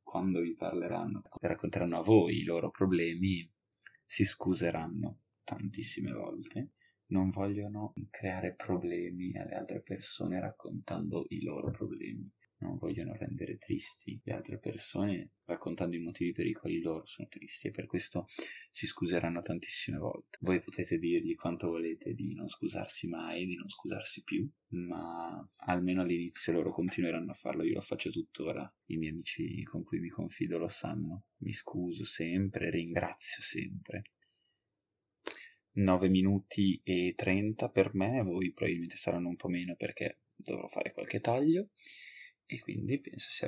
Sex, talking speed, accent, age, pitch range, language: male, 145 wpm, native, 20-39, 85-100 Hz, Italian